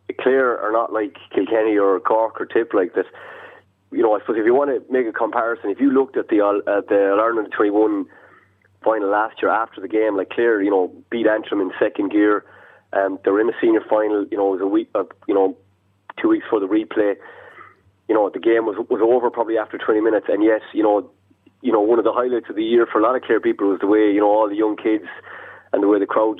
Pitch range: 100-125 Hz